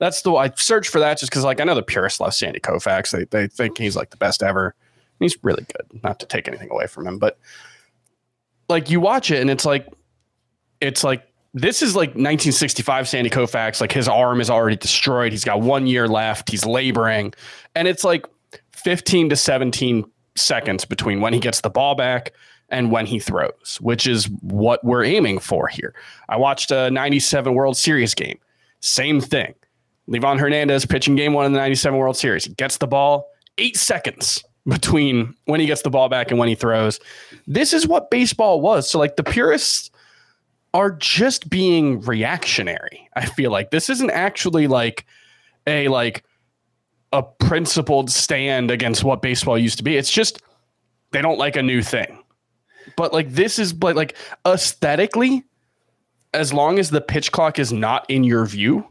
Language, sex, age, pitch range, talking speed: English, male, 20-39, 120-155 Hz, 185 wpm